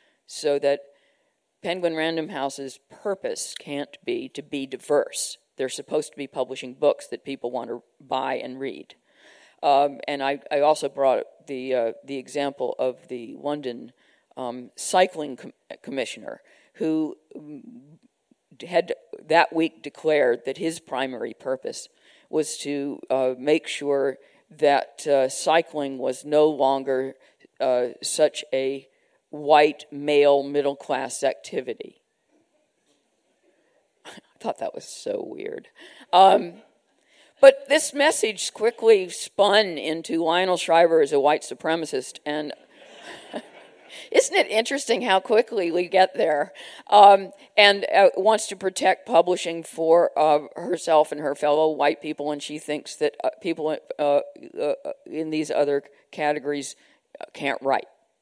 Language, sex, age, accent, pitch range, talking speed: English, female, 50-69, American, 140-200 Hz, 130 wpm